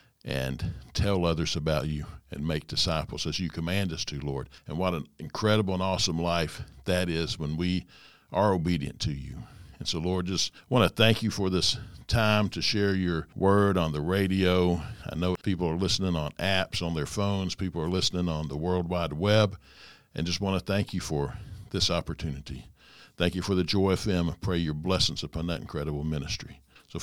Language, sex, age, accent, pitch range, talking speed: English, male, 60-79, American, 80-100 Hz, 195 wpm